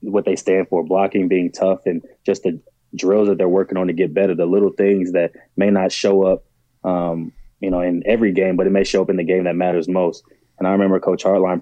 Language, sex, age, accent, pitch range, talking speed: English, male, 20-39, American, 85-95 Hz, 250 wpm